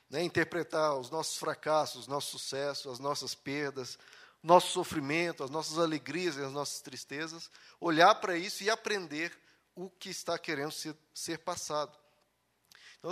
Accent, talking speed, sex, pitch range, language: Brazilian, 140 wpm, male, 150-210 Hz, Portuguese